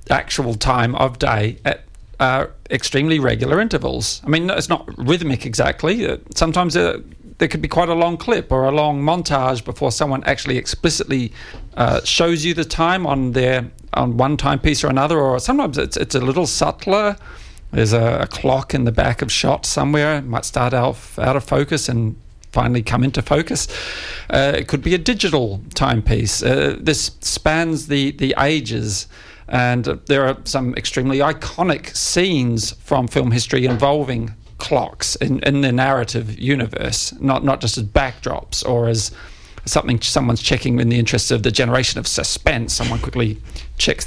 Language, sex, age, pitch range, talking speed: English, male, 40-59, 115-150 Hz, 170 wpm